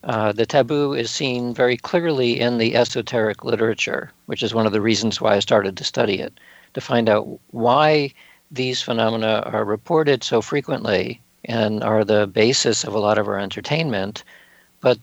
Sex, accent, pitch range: male, American, 110-145 Hz